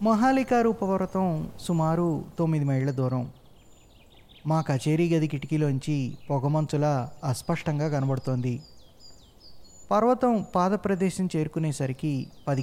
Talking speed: 75 wpm